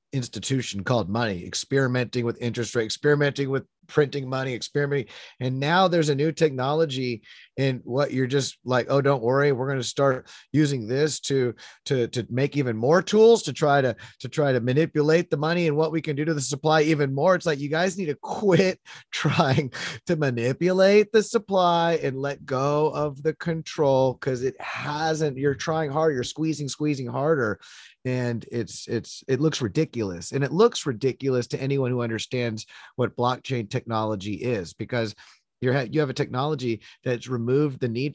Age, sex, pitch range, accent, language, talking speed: 30-49, male, 120-150 Hz, American, English, 180 wpm